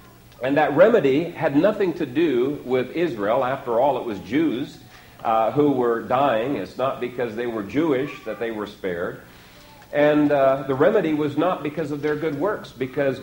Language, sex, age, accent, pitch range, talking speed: English, male, 50-69, American, 115-150 Hz, 180 wpm